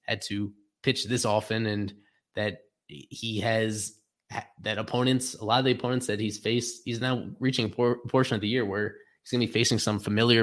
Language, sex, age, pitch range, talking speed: English, male, 20-39, 110-130 Hz, 200 wpm